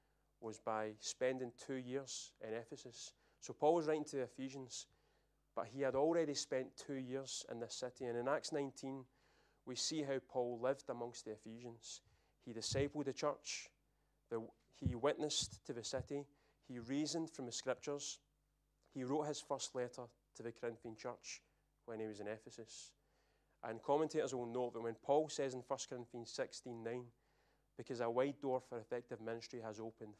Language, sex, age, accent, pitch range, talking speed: English, male, 30-49, British, 115-135 Hz, 175 wpm